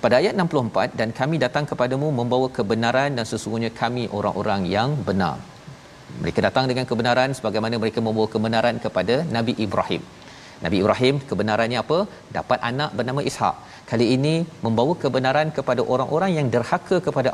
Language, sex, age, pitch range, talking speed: Malayalam, male, 40-59, 110-135 Hz, 150 wpm